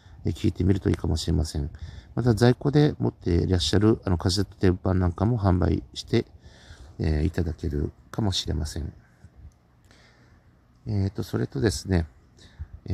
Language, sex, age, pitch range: Japanese, male, 50-69, 85-105 Hz